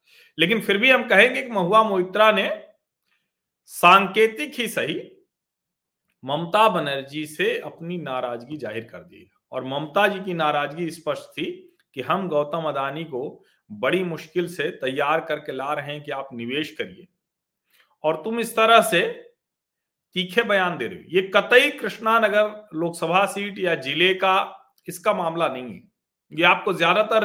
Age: 40-59